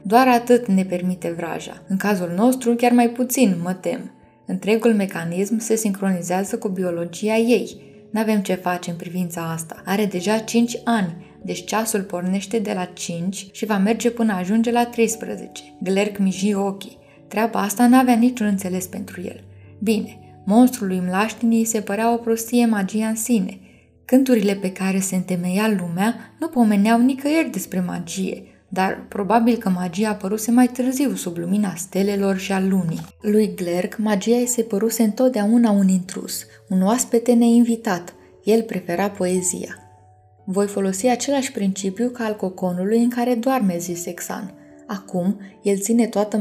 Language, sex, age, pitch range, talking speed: Romanian, female, 20-39, 185-235 Hz, 155 wpm